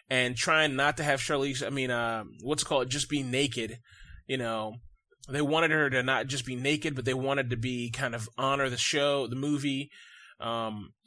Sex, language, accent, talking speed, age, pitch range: male, English, American, 205 wpm, 20-39, 125-160 Hz